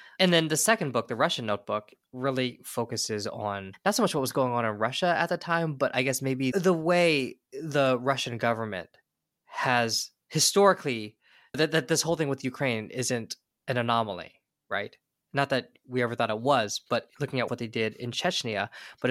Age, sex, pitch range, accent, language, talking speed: 20-39, male, 120-160 Hz, American, English, 190 wpm